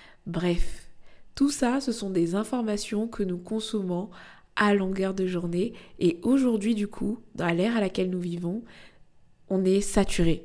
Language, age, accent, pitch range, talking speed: French, 20-39, French, 180-215 Hz, 155 wpm